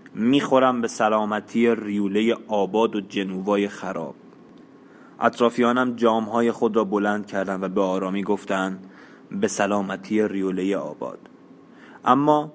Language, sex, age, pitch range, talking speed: Persian, male, 20-39, 105-125 Hz, 110 wpm